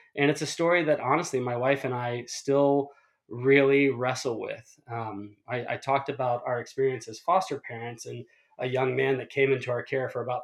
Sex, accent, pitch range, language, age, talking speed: male, American, 120-140 Hz, English, 20-39, 200 wpm